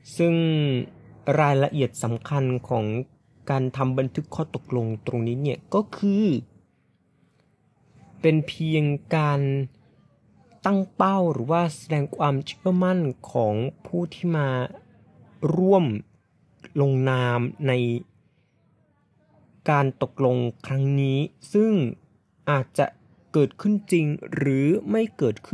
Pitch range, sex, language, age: 125-155 Hz, male, Thai, 20-39